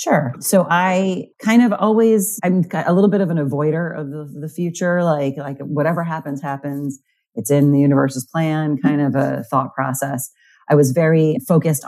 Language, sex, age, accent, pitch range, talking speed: English, female, 40-59, American, 140-185 Hz, 175 wpm